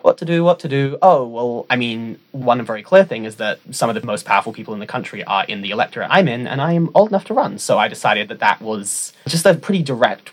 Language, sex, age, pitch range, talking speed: English, male, 20-39, 105-145 Hz, 275 wpm